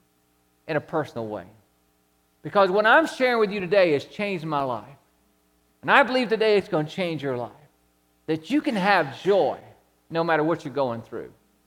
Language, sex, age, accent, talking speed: English, male, 50-69, American, 185 wpm